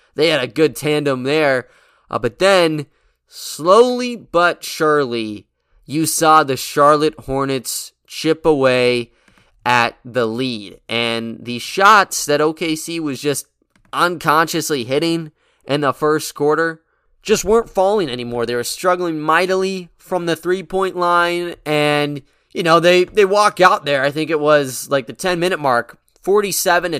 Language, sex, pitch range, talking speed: English, male, 140-185 Hz, 140 wpm